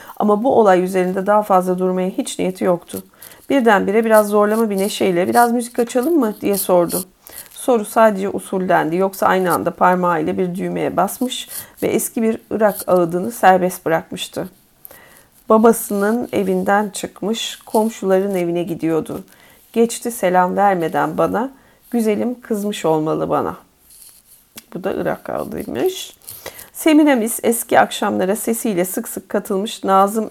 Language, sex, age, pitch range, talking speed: Turkish, female, 40-59, 185-230 Hz, 125 wpm